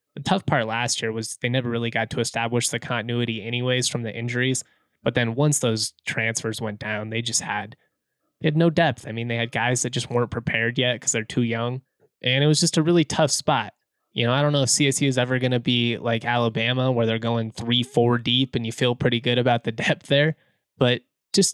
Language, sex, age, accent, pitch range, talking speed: English, male, 20-39, American, 115-135 Hz, 235 wpm